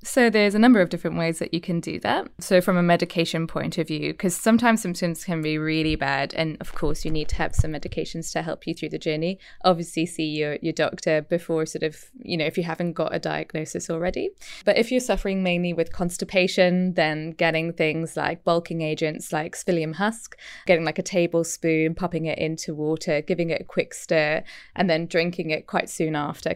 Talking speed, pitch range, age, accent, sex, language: 210 wpm, 160-190 Hz, 20-39, British, female, English